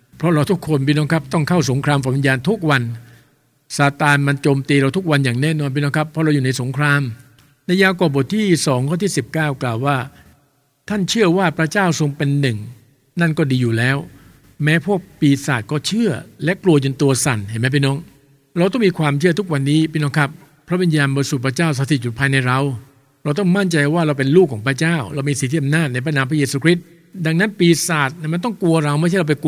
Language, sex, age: English, male, 60-79